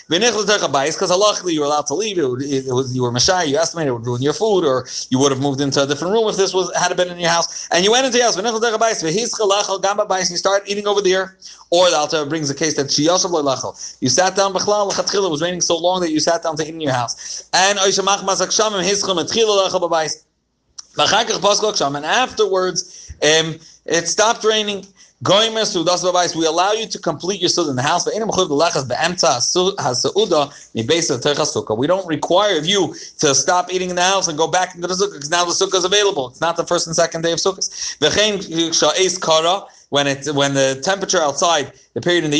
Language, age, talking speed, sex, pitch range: English, 30-49, 185 wpm, male, 140-190 Hz